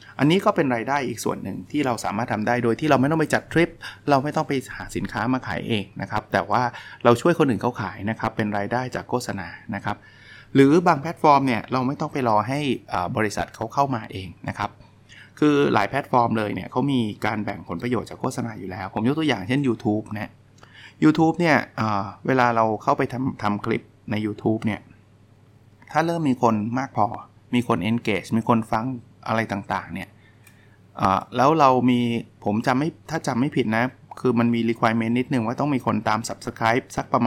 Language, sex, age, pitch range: Thai, male, 20-39, 105-130 Hz